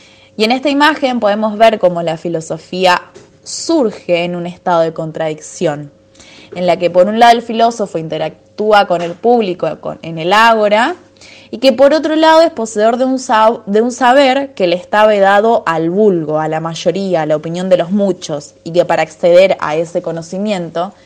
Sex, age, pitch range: female, 20-39, 165-215 Hz